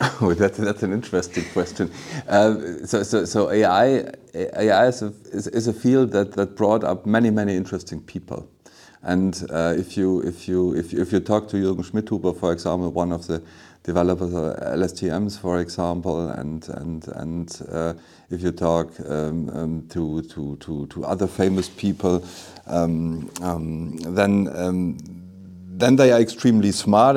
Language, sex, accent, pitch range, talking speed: English, male, German, 90-105 Hz, 165 wpm